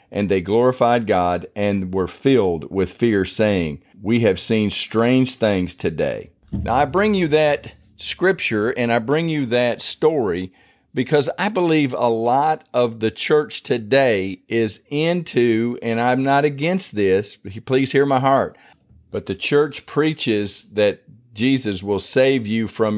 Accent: American